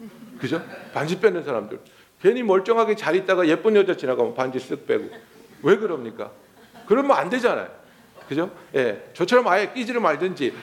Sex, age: male, 50-69